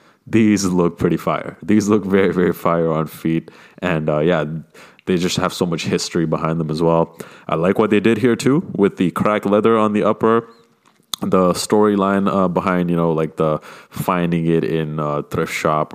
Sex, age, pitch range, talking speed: male, 20-39, 80-95 Hz, 195 wpm